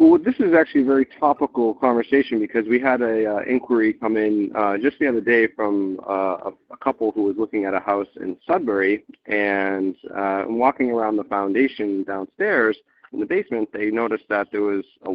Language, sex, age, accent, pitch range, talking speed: English, male, 40-59, American, 100-130 Hz, 190 wpm